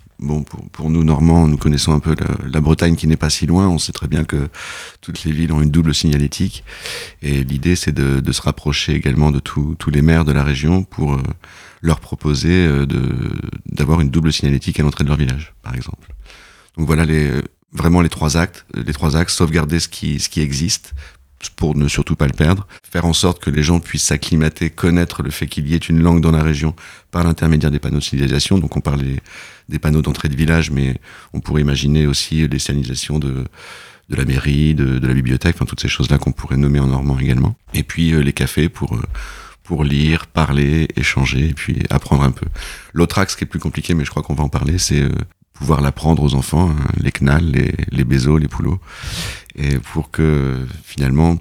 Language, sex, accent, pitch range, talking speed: French, male, French, 70-80 Hz, 215 wpm